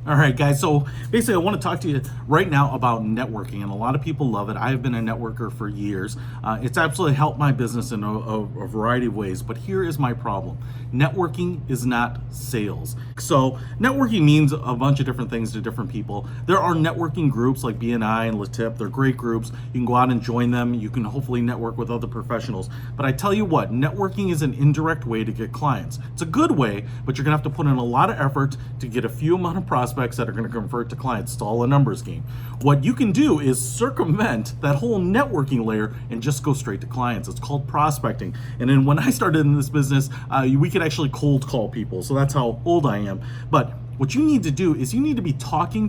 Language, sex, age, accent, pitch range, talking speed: English, male, 40-59, American, 120-145 Hz, 240 wpm